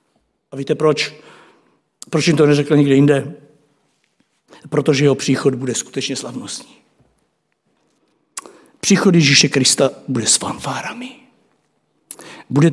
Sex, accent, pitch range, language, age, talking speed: male, native, 135-155 Hz, Czech, 60-79, 105 wpm